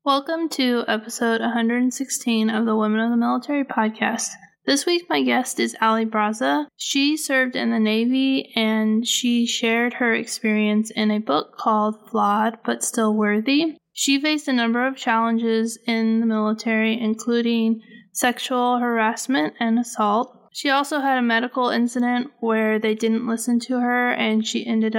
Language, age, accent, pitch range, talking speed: English, 20-39, American, 220-245 Hz, 155 wpm